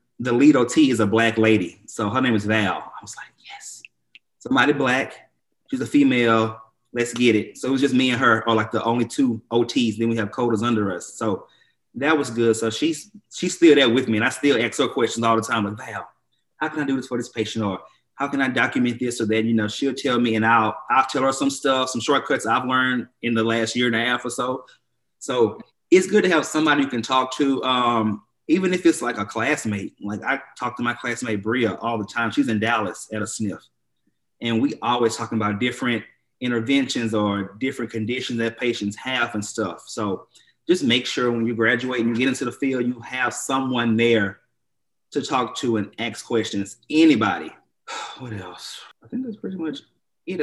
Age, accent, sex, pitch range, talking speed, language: 30-49, American, male, 110-130 Hz, 220 wpm, English